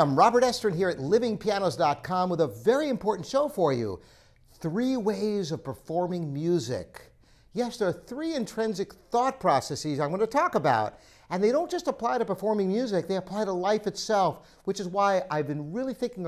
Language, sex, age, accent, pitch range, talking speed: English, male, 60-79, American, 155-235 Hz, 185 wpm